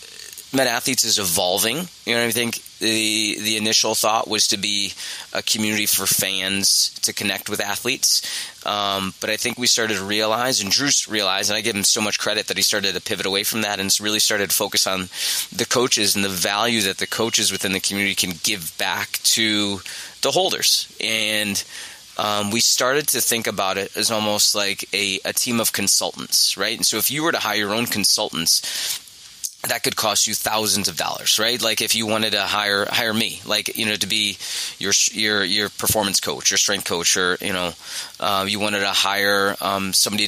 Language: English